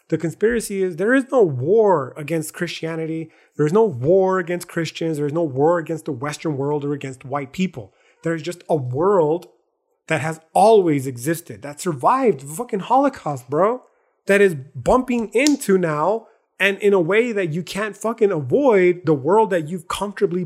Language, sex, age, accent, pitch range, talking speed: English, male, 30-49, American, 145-185 Hz, 180 wpm